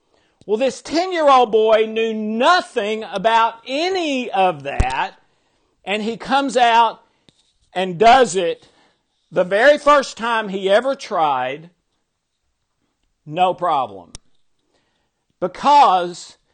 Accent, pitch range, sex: American, 180-250 Hz, male